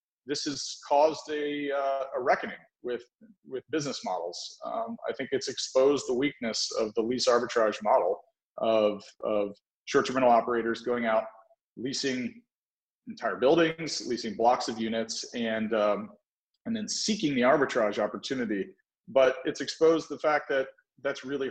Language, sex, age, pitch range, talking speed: English, male, 30-49, 115-145 Hz, 150 wpm